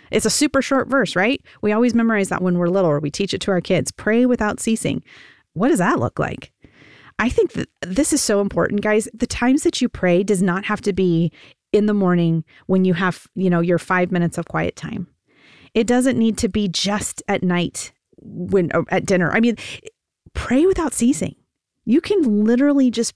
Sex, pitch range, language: female, 175-245 Hz, English